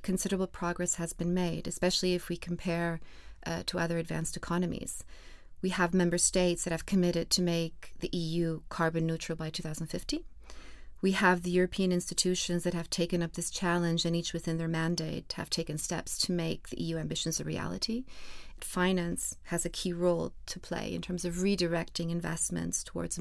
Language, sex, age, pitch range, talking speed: English, female, 30-49, 170-185 Hz, 175 wpm